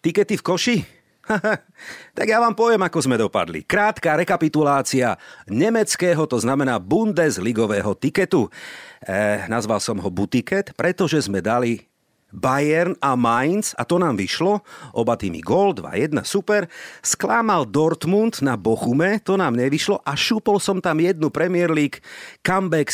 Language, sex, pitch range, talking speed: Slovak, male, 120-185 Hz, 135 wpm